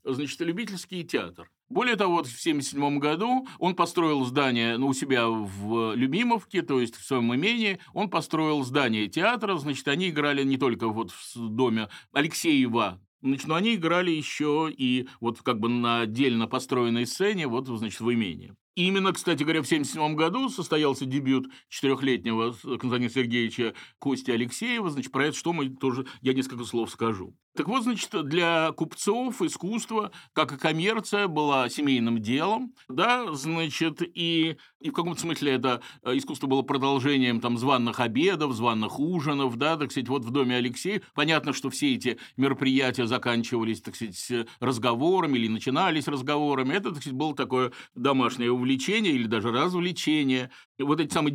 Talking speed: 155 wpm